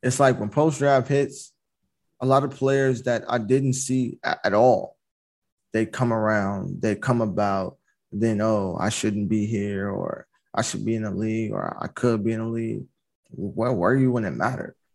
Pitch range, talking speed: 110-130 Hz, 195 wpm